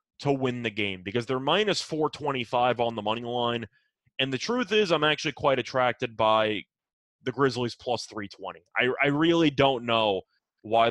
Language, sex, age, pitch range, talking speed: English, male, 20-39, 110-135 Hz, 170 wpm